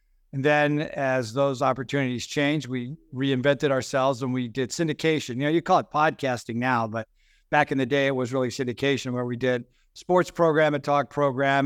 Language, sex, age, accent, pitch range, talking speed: English, male, 50-69, American, 130-150 Hz, 190 wpm